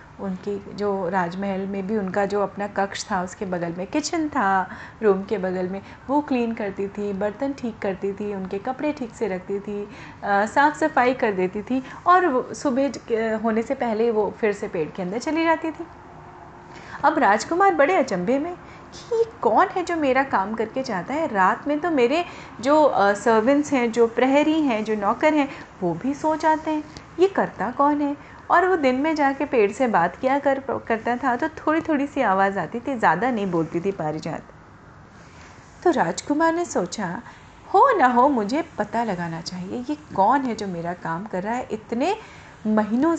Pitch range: 200-290 Hz